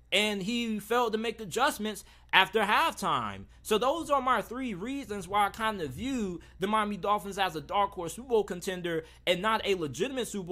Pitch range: 190-230 Hz